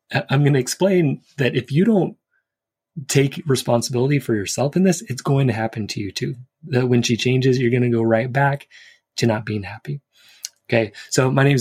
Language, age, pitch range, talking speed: English, 20-39, 115-135 Hz, 190 wpm